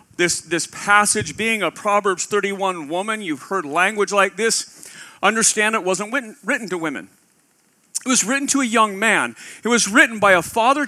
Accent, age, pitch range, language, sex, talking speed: American, 40-59, 190-245 Hz, English, male, 180 wpm